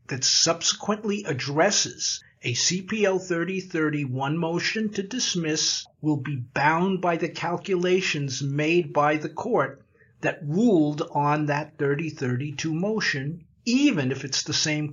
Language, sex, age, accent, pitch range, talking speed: English, male, 50-69, American, 145-195 Hz, 120 wpm